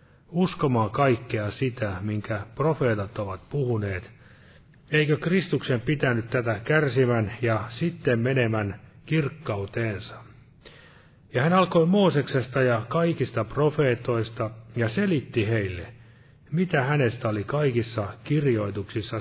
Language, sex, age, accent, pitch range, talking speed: Finnish, male, 30-49, native, 110-145 Hz, 95 wpm